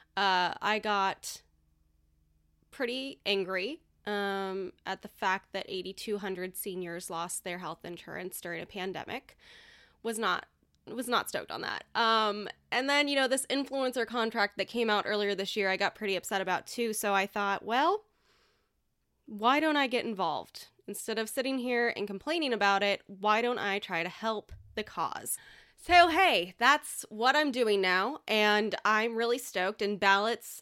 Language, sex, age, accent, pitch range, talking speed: English, female, 10-29, American, 195-245 Hz, 165 wpm